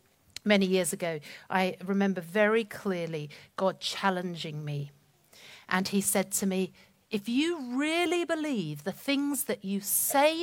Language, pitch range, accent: English, 190-275 Hz, British